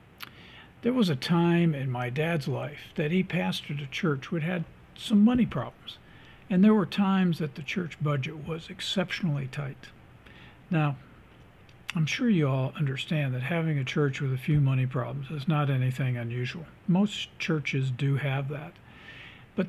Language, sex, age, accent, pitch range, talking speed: English, male, 60-79, American, 140-185 Hz, 165 wpm